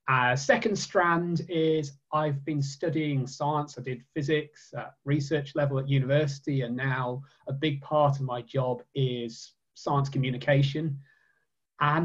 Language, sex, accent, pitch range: English, male, British, 135-165 Hz